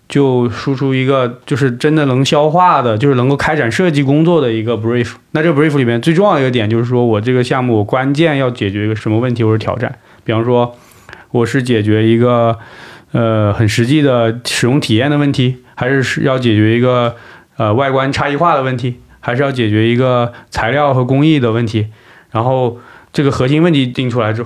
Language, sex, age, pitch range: Chinese, male, 20-39, 115-140 Hz